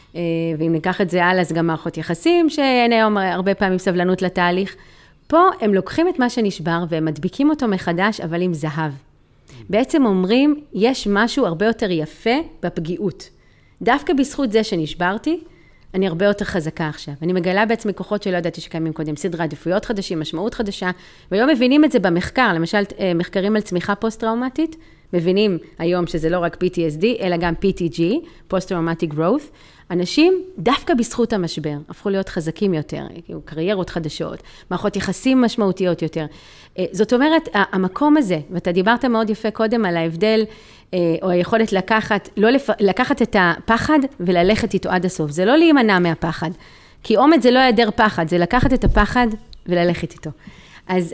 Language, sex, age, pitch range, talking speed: Hebrew, female, 30-49, 175-230 Hz, 155 wpm